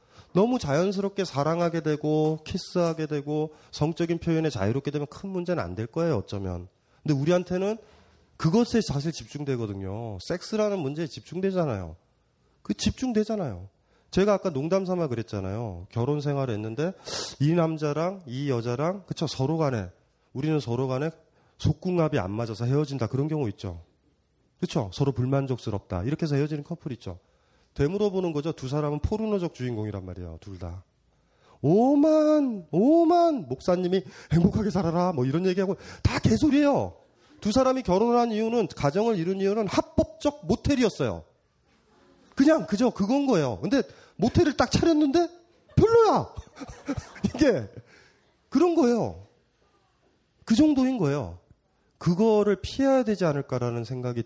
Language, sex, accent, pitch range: Korean, male, native, 125-200 Hz